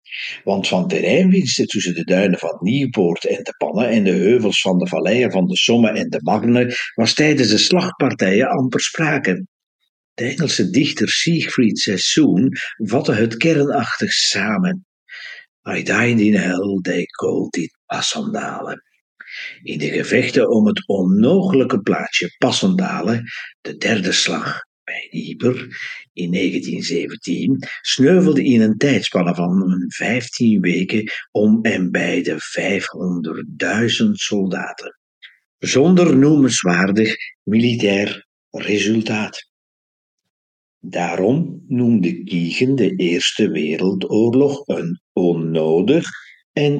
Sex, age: male, 60-79